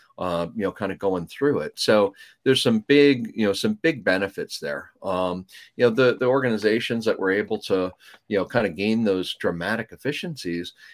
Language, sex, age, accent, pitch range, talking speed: English, male, 40-59, American, 90-120 Hz, 200 wpm